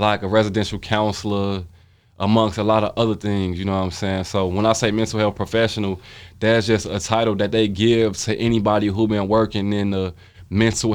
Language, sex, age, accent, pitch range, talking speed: English, male, 20-39, American, 95-110 Hz, 205 wpm